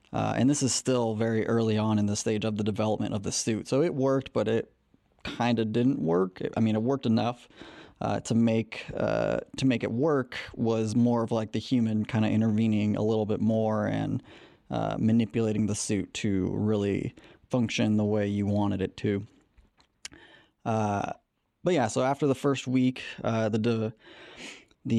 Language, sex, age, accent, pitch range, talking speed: English, male, 20-39, American, 110-120 Hz, 190 wpm